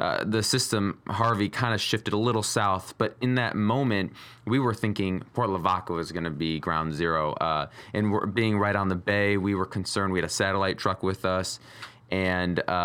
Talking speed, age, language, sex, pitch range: 200 wpm, 20-39, English, male, 95-115 Hz